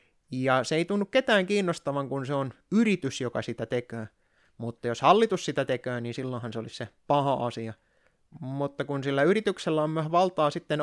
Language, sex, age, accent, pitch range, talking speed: Finnish, male, 20-39, native, 130-170 Hz, 185 wpm